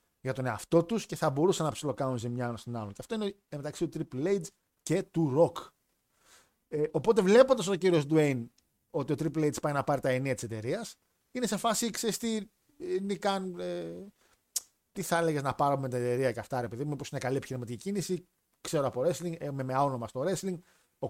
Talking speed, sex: 200 wpm, male